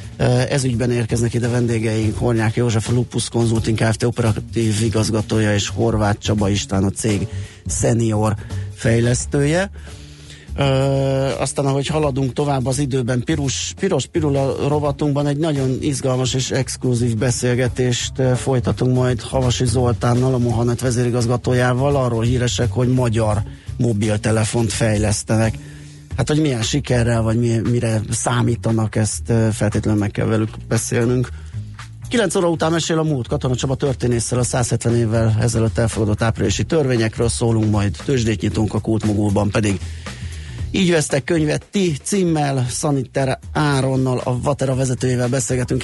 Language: Hungarian